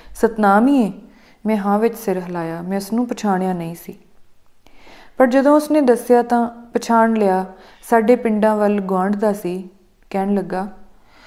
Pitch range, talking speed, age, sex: 190-230 Hz, 150 wpm, 30-49, female